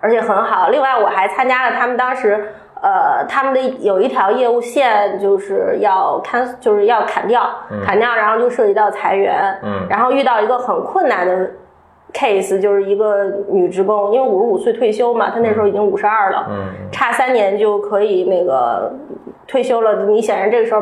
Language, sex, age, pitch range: Chinese, female, 20-39, 205-300 Hz